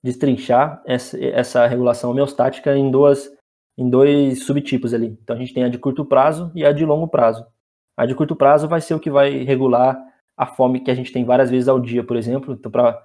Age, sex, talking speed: 20-39, male, 205 wpm